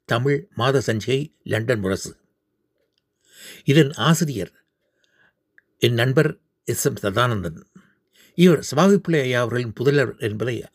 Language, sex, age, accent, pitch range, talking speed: Tamil, male, 60-79, native, 110-155 Hz, 95 wpm